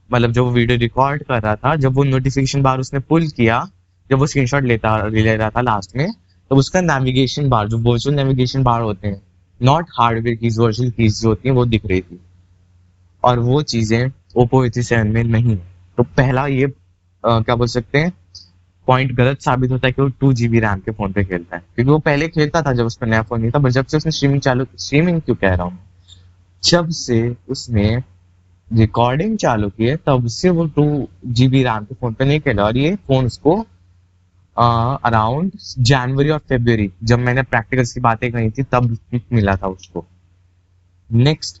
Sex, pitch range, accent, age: male, 105-135 Hz, native, 20-39